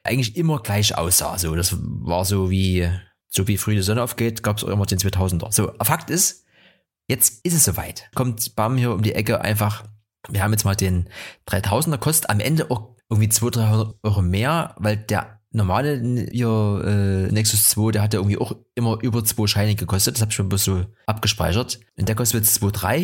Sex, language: male, German